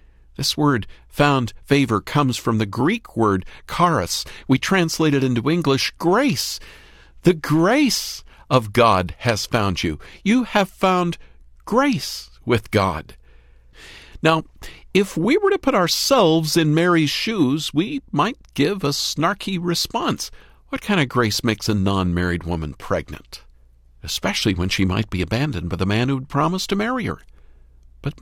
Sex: male